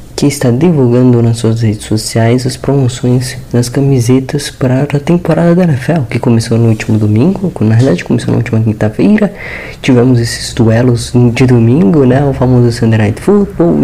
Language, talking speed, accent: Portuguese, 160 wpm, Brazilian